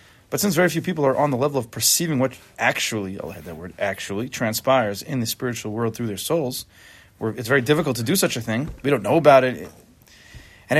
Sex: male